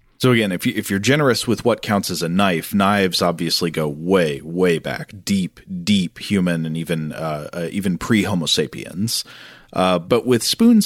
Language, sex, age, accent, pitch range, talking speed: English, male, 40-59, American, 90-110 Hz, 180 wpm